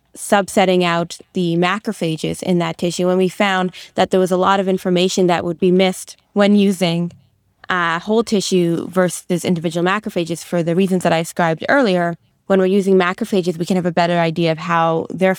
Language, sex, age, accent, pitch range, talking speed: English, female, 20-39, American, 175-195 Hz, 190 wpm